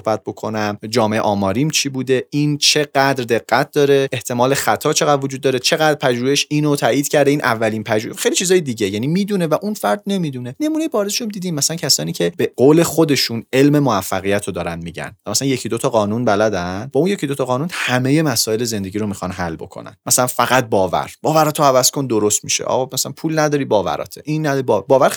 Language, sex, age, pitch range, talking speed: Persian, male, 30-49, 110-155 Hz, 200 wpm